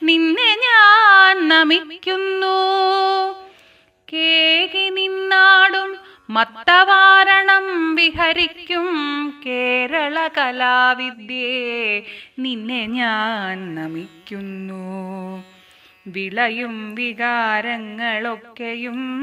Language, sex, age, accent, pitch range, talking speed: Malayalam, female, 30-49, native, 260-380 Hz, 40 wpm